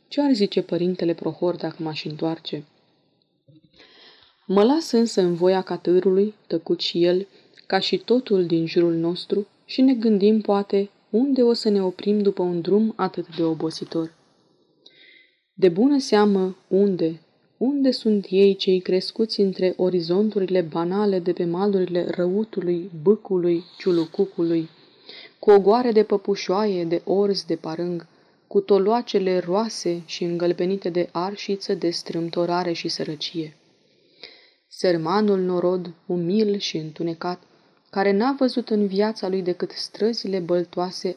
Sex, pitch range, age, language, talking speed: female, 175-210 Hz, 20-39, Romanian, 130 wpm